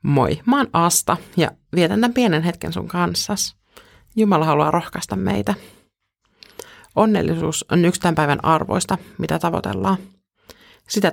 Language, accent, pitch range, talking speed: Finnish, native, 150-185 Hz, 120 wpm